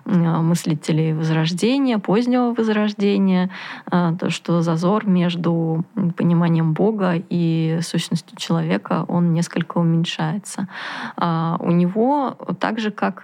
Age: 20-39